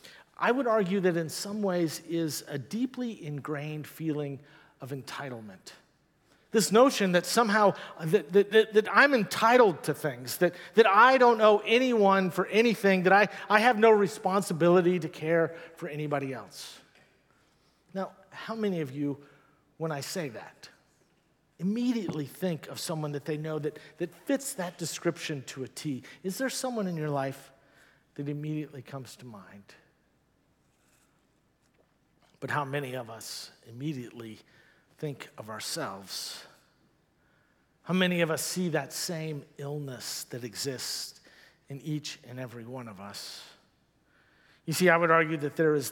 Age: 50-69